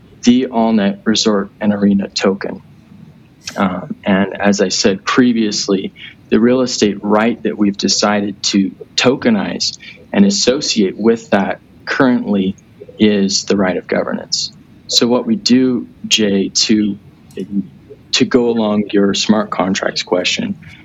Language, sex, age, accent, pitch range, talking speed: English, male, 20-39, American, 100-115 Hz, 125 wpm